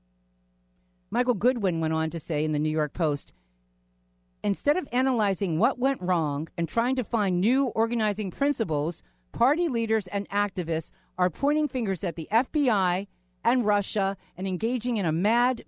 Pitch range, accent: 145-220 Hz, American